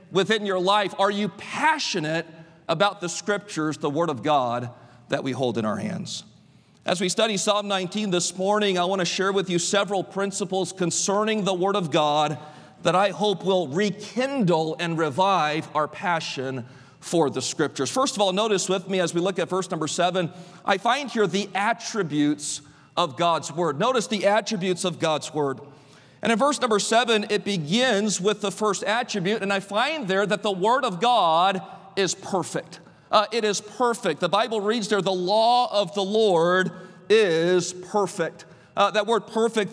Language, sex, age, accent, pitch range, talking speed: English, male, 40-59, American, 180-225 Hz, 180 wpm